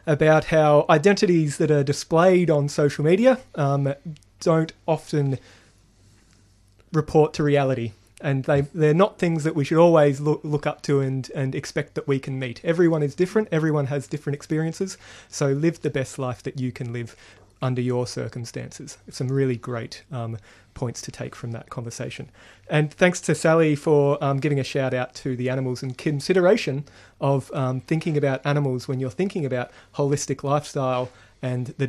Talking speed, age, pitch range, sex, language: 175 wpm, 30-49, 130-160 Hz, male, English